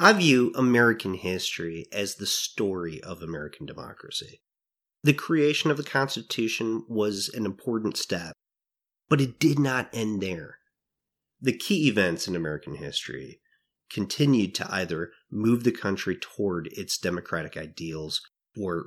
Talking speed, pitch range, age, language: 135 wpm, 85-125 Hz, 30-49, English